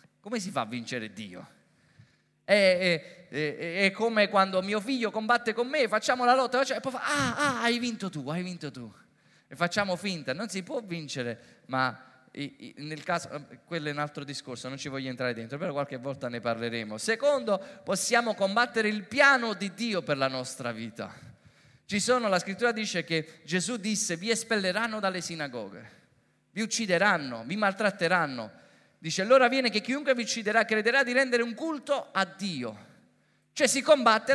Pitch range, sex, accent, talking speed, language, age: 165-245 Hz, male, native, 175 wpm, Italian, 20-39